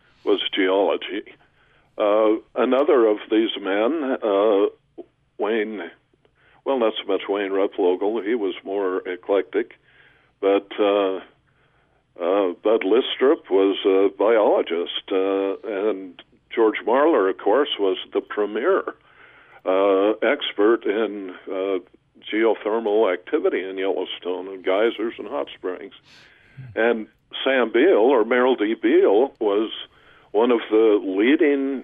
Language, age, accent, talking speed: English, 60-79, American, 115 wpm